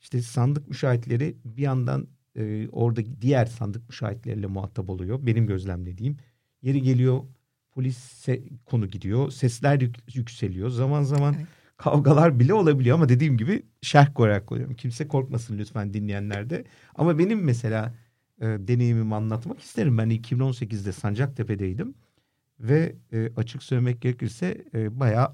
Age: 50-69